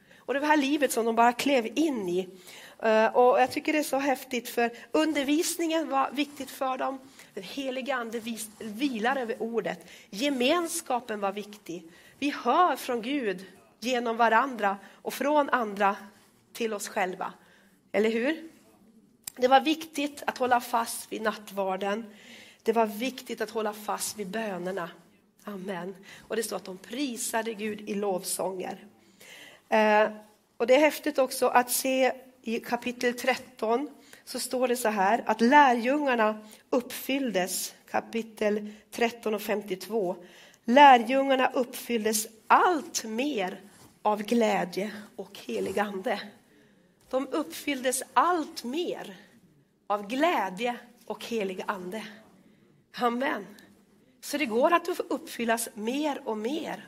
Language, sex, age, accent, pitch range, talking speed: Swedish, female, 40-59, native, 210-265 Hz, 125 wpm